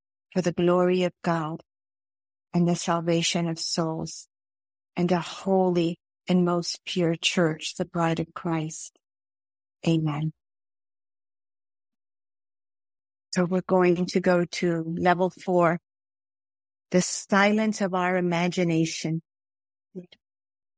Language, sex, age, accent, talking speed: English, female, 50-69, American, 100 wpm